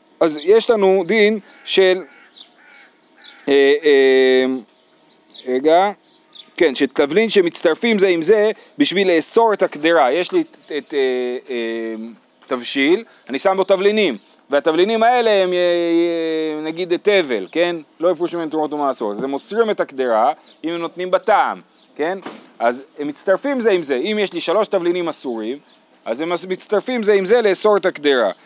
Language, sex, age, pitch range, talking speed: Hebrew, male, 40-59, 165-225 Hz, 140 wpm